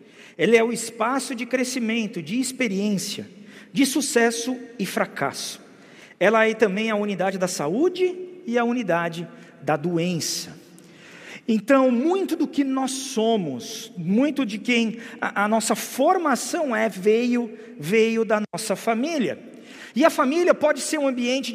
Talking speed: 135 wpm